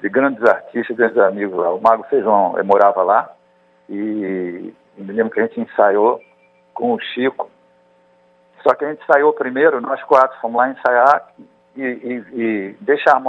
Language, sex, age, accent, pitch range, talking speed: Portuguese, male, 50-69, Brazilian, 100-160 Hz, 165 wpm